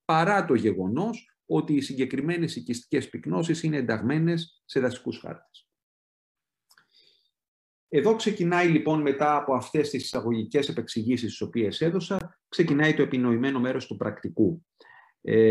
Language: Greek